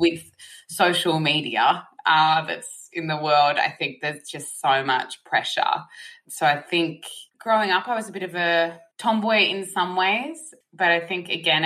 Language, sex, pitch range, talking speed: English, female, 140-175 Hz, 175 wpm